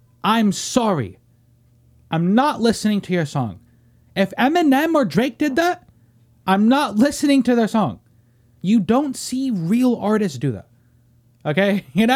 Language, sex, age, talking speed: English, male, 30-49, 155 wpm